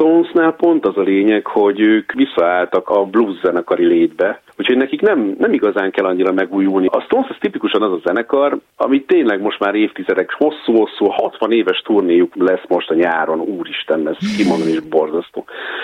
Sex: male